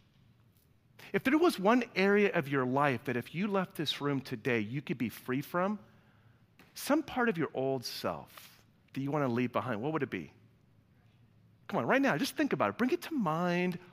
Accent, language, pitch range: American, English, 125-205 Hz